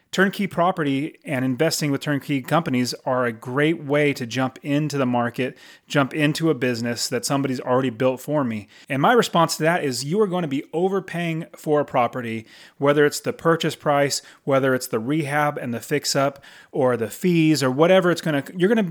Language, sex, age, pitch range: English, male, 30-49, 130-165 Hz